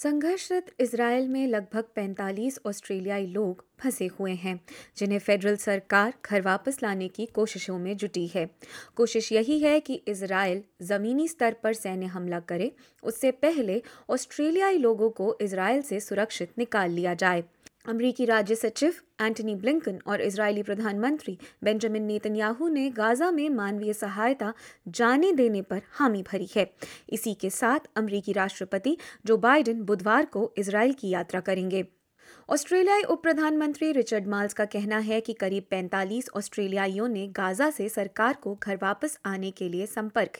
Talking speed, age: 145 wpm, 20-39